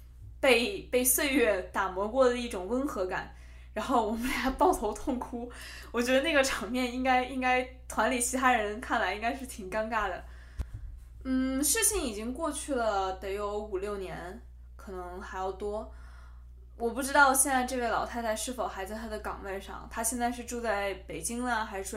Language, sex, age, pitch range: Chinese, female, 20-39, 195-255 Hz